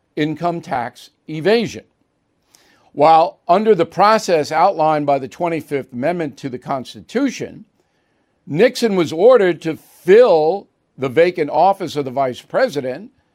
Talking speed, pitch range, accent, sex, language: 120 wpm, 145-195 Hz, American, male, English